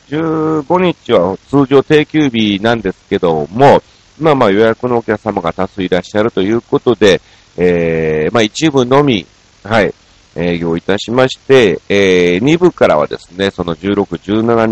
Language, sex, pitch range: Japanese, male, 95-130 Hz